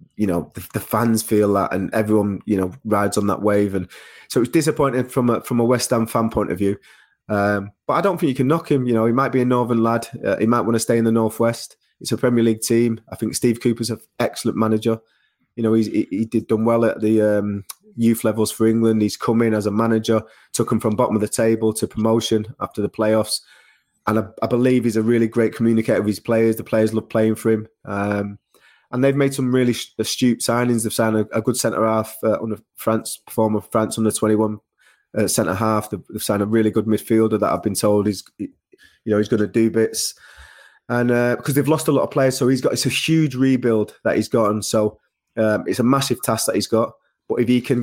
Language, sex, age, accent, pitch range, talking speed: English, male, 20-39, British, 110-120 Hz, 245 wpm